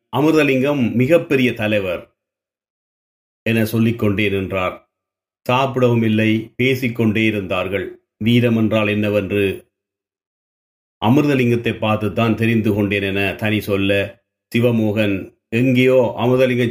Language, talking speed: Tamil, 80 wpm